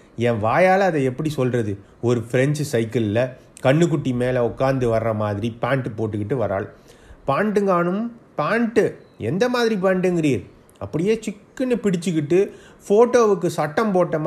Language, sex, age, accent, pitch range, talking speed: Tamil, male, 30-49, native, 135-190 Hz, 115 wpm